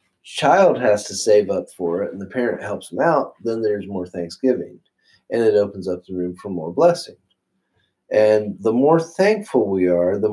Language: English